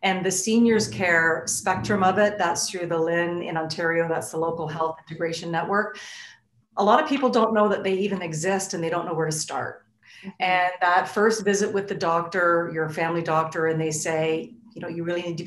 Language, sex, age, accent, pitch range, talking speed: English, female, 40-59, American, 170-215 Hz, 215 wpm